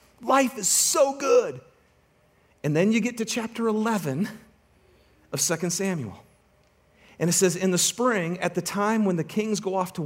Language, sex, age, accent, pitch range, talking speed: English, male, 40-59, American, 140-215 Hz, 175 wpm